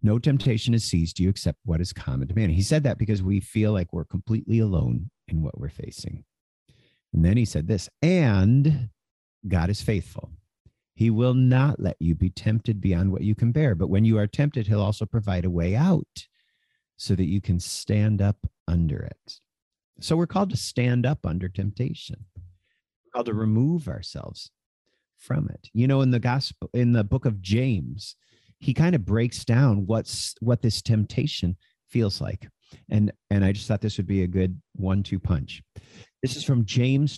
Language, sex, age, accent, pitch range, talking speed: English, male, 50-69, American, 95-130 Hz, 185 wpm